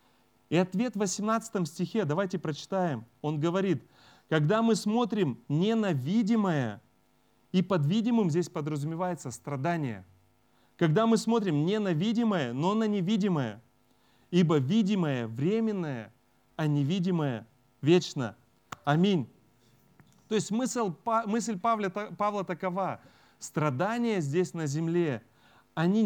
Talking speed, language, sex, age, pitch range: 105 wpm, Russian, male, 30-49, 135-200 Hz